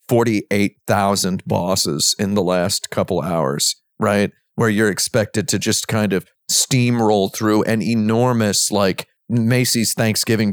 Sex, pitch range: male, 100-115 Hz